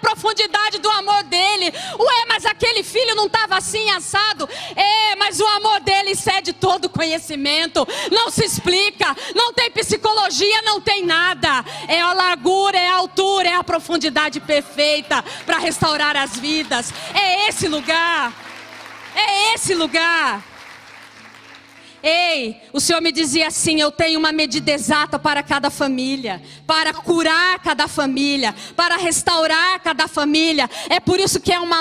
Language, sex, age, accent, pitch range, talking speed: Portuguese, female, 40-59, Brazilian, 250-370 Hz, 145 wpm